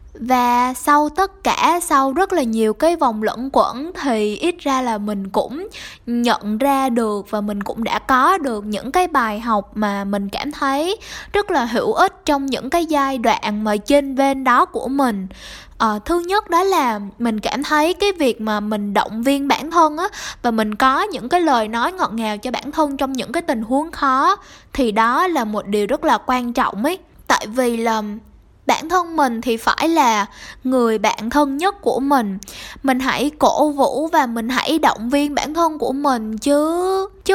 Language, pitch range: Vietnamese, 230-310 Hz